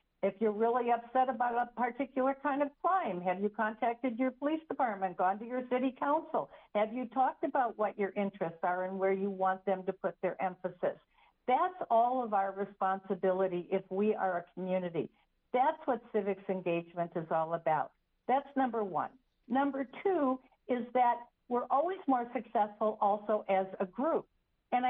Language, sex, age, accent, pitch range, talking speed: English, female, 50-69, American, 190-255 Hz, 170 wpm